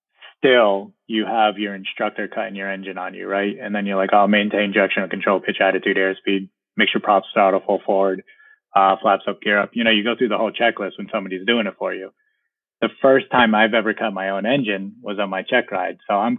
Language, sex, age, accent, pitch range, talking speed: English, male, 20-39, American, 100-115 Hz, 240 wpm